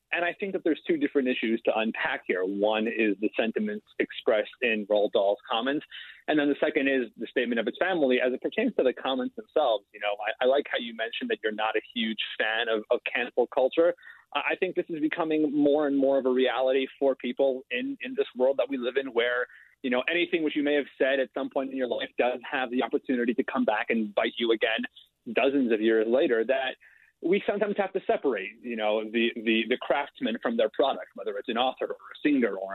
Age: 30-49